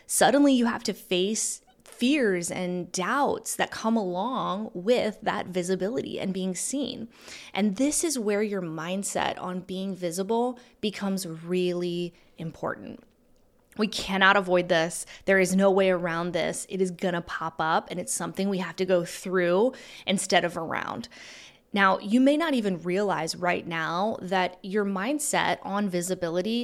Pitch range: 180-215 Hz